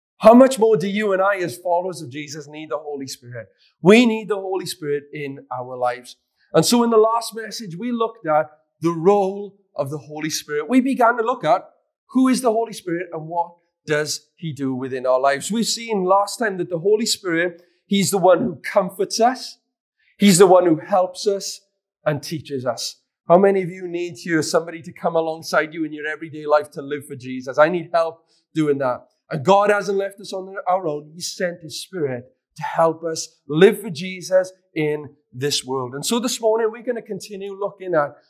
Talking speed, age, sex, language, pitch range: 210 wpm, 40-59, male, English, 155-205 Hz